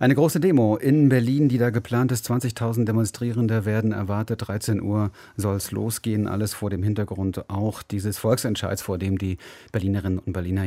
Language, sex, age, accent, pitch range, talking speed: German, male, 30-49, German, 105-130 Hz, 175 wpm